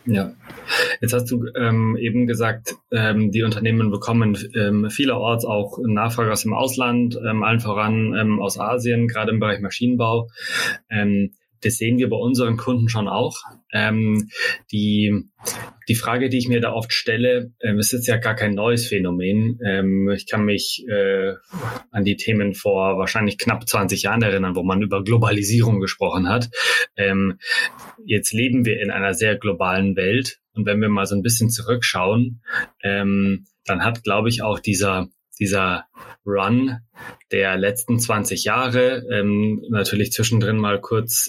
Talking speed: 160 wpm